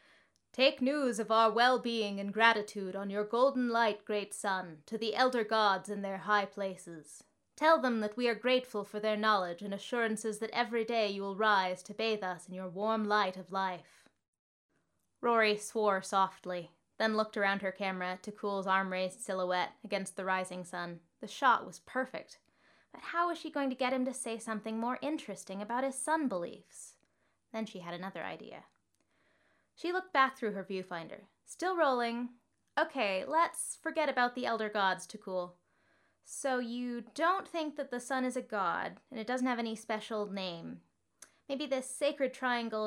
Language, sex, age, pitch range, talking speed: English, female, 20-39, 195-255 Hz, 175 wpm